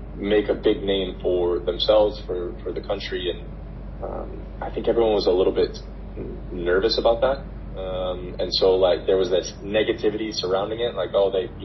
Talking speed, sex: 185 wpm, male